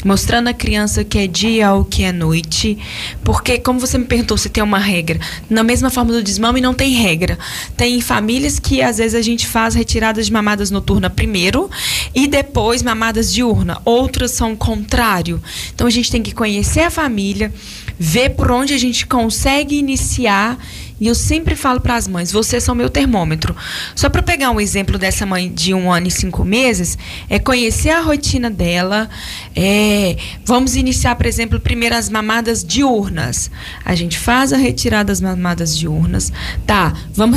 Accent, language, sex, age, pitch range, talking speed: Brazilian, English, female, 10-29, 180-235 Hz, 175 wpm